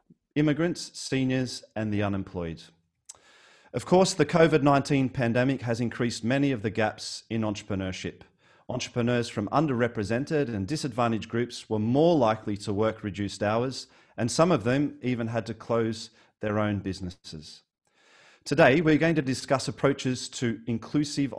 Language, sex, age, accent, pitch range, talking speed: English, male, 40-59, Australian, 105-135 Hz, 140 wpm